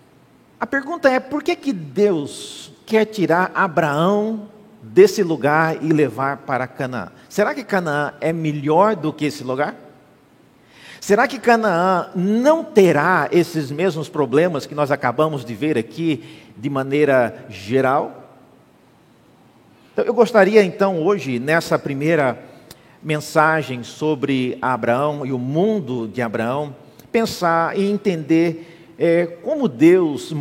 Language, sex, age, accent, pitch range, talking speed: Portuguese, male, 50-69, Brazilian, 135-195 Hz, 120 wpm